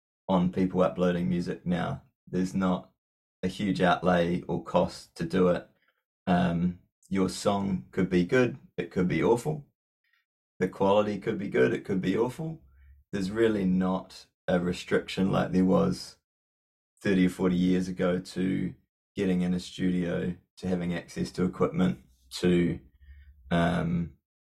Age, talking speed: 20-39, 145 wpm